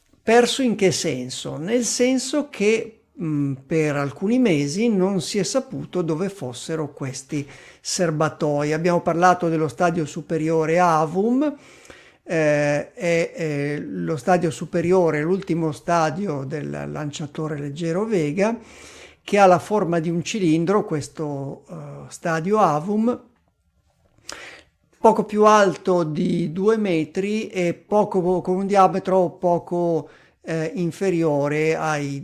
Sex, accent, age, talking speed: male, native, 50-69, 115 wpm